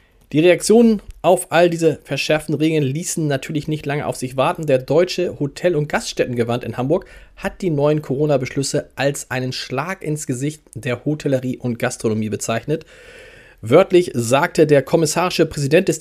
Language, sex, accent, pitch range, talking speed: German, male, German, 125-160 Hz, 155 wpm